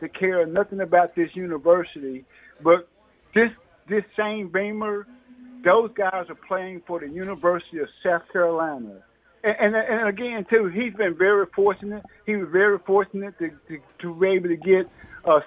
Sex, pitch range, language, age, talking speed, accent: male, 170-195 Hz, English, 50-69, 165 wpm, American